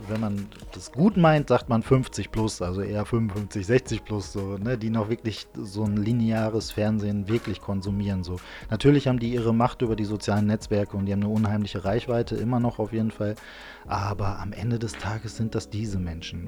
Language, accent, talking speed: German, German, 200 wpm